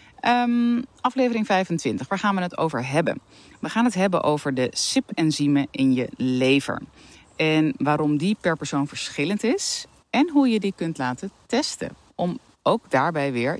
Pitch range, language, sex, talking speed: 130-165 Hz, Dutch, female, 160 wpm